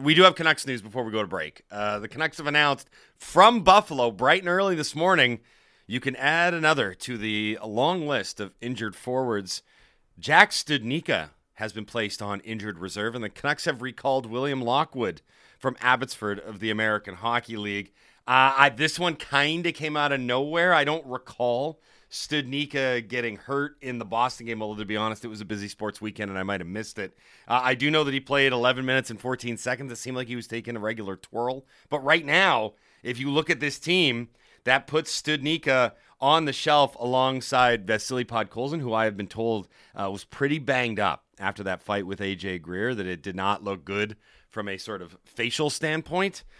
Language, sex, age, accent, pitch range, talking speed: English, male, 30-49, American, 110-140 Hz, 200 wpm